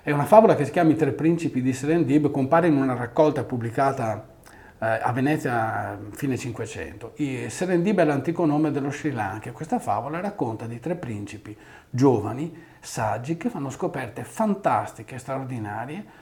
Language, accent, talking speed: Italian, native, 155 wpm